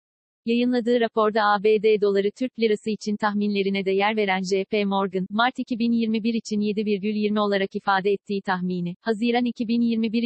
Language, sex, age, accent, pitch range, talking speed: Turkish, female, 40-59, native, 195-225 Hz, 135 wpm